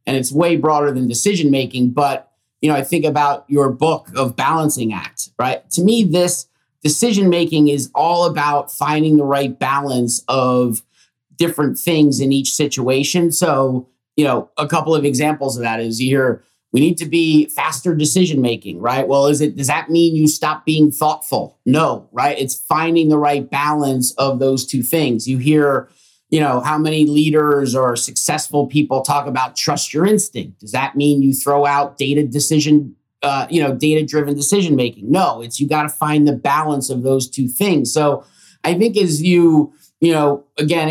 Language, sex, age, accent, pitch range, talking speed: English, male, 30-49, American, 135-160 Hz, 180 wpm